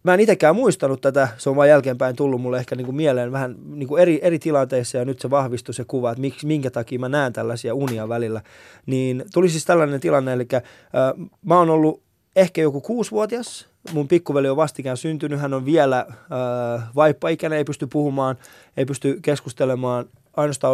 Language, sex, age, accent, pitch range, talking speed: Finnish, male, 20-39, native, 125-155 Hz, 190 wpm